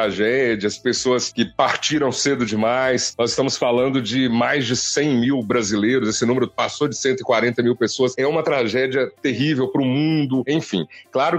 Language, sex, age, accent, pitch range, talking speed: Portuguese, male, 40-59, Brazilian, 125-170 Hz, 165 wpm